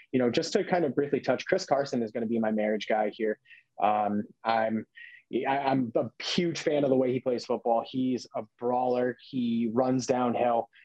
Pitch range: 115-135 Hz